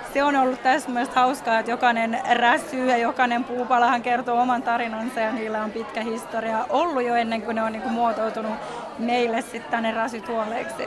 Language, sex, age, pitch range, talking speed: Finnish, female, 20-39, 225-250 Hz, 180 wpm